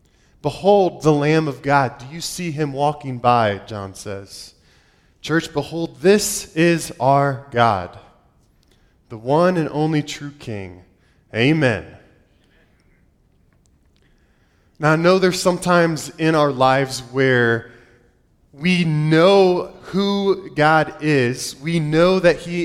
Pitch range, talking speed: 140-175 Hz, 115 wpm